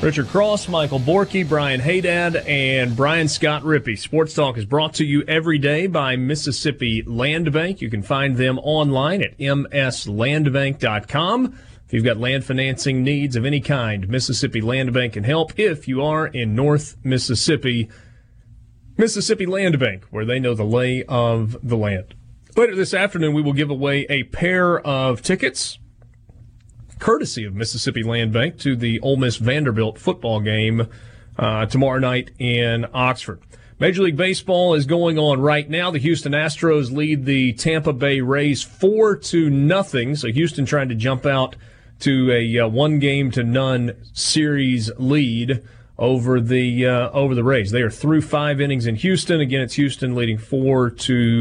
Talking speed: 165 wpm